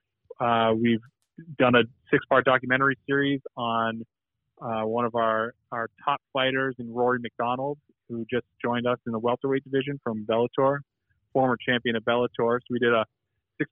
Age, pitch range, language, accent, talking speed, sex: 30-49, 115-130 Hz, English, American, 165 wpm, male